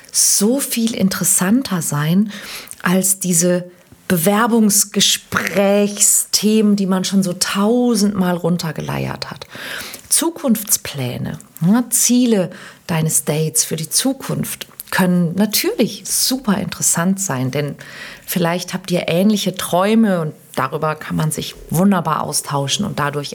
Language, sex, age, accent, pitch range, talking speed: German, female, 40-59, German, 165-200 Hz, 110 wpm